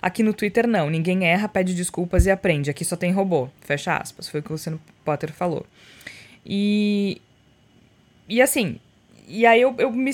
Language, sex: Portuguese, female